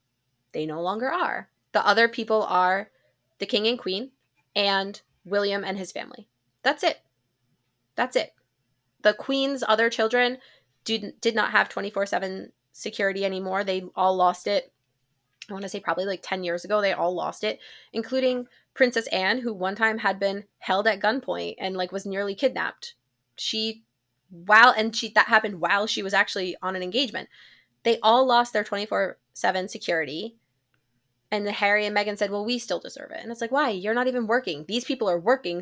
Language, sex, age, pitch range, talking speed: English, female, 20-39, 175-225 Hz, 180 wpm